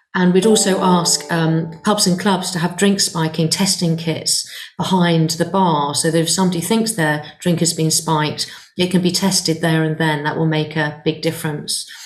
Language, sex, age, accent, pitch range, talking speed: English, female, 40-59, British, 160-190 Hz, 200 wpm